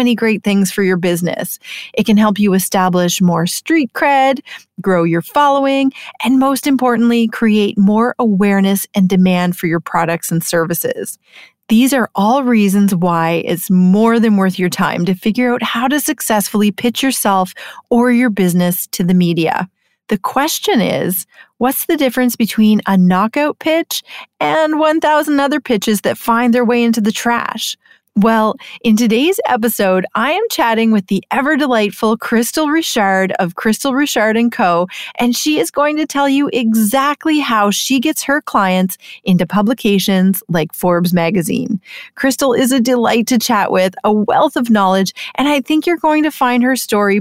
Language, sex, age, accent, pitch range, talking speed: English, female, 30-49, American, 190-265 Hz, 165 wpm